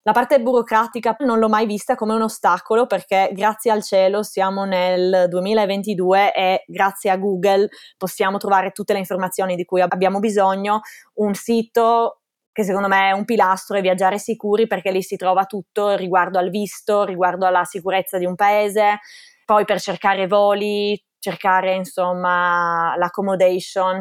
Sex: female